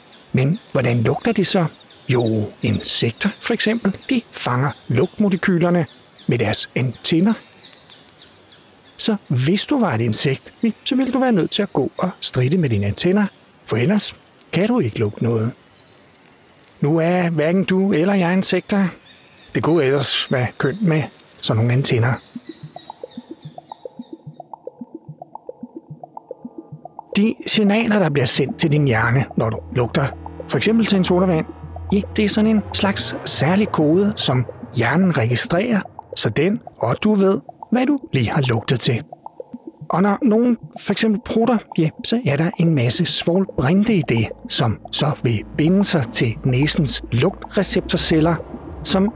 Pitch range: 135-215 Hz